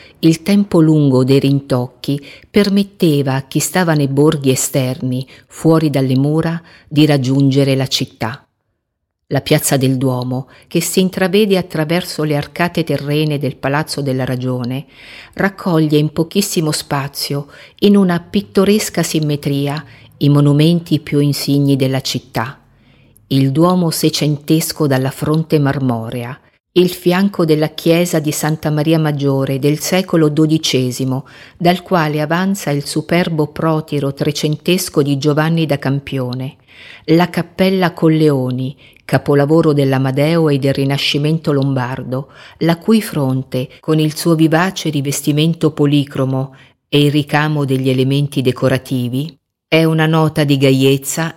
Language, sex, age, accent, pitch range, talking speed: Italian, female, 50-69, native, 135-160 Hz, 125 wpm